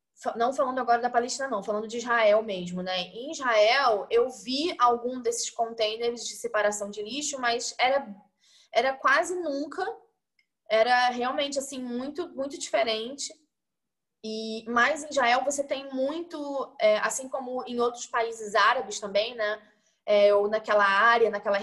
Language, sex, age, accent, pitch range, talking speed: Portuguese, female, 20-39, Brazilian, 210-270 Hz, 150 wpm